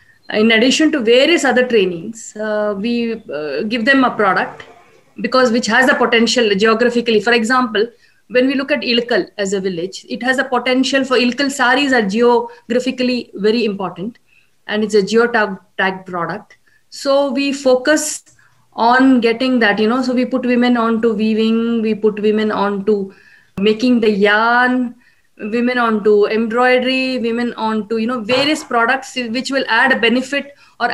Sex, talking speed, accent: female, 160 wpm, Indian